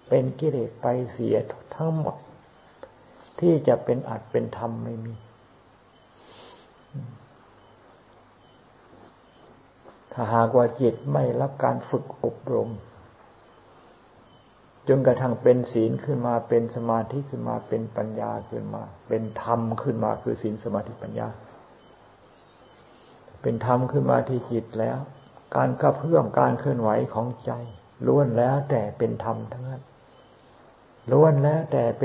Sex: male